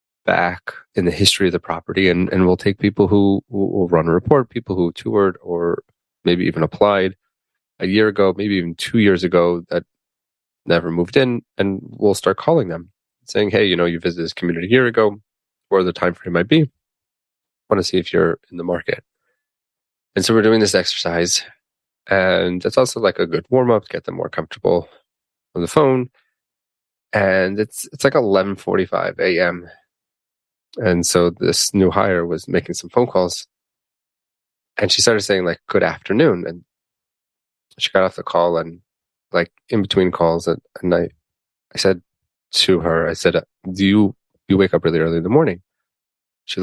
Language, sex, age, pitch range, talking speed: English, male, 20-39, 85-100 Hz, 185 wpm